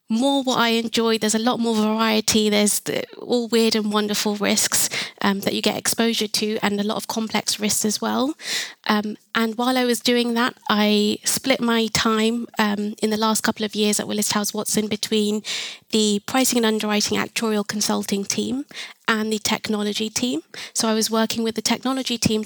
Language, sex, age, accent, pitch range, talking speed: English, female, 20-39, British, 205-230 Hz, 190 wpm